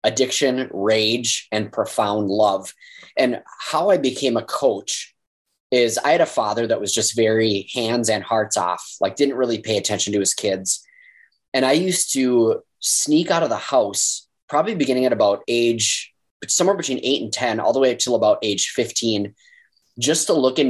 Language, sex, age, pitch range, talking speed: English, male, 20-39, 105-130 Hz, 180 wpm